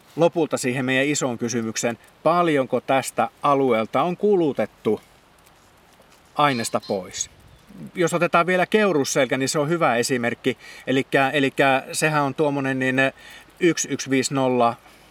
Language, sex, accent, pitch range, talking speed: Finnish, male, native, 125-165 Hz, 105 wpm